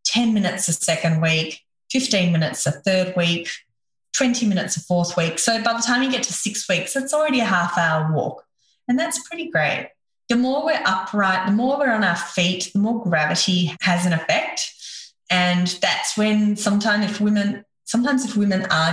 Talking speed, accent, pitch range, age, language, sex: 185 wpm, Australian, 175-230 Hz, 20-39, English, female